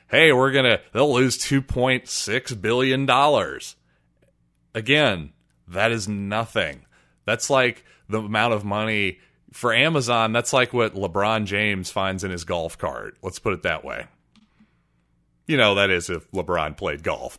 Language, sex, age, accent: English, male, 30-49, American